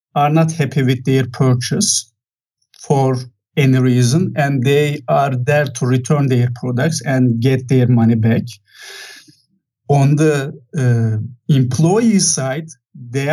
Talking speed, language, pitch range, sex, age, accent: 125 wpm, English, 130-160 Hz, male, 50-69, Turkish